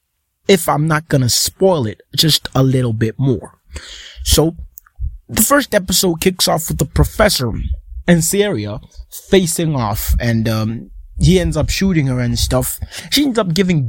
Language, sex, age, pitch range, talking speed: English, male, 20-39, 105-175 Hz, 165 wpm